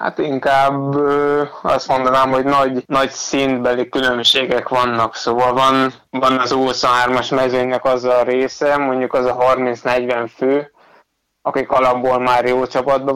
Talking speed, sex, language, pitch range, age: 130 wpm, male, Hungarian, 125-135 Hz, 20-39